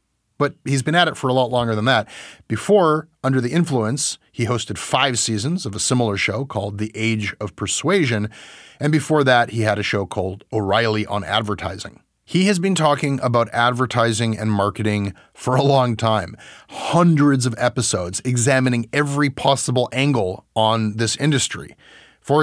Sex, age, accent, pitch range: male, 30-49, American, 110-145 Hz